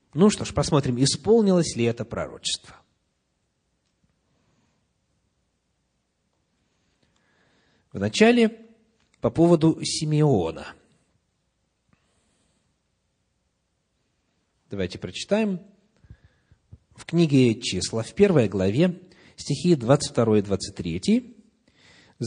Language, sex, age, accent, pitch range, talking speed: Russian, male, 40-59, native, 120-195 Hz, 60 wpm